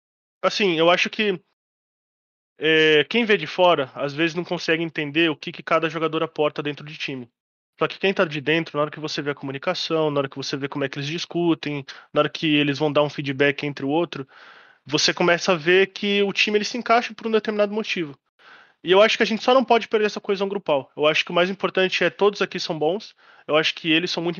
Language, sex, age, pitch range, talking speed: Portuguese, male, 20-39, 150-190 Hz, 250 wpm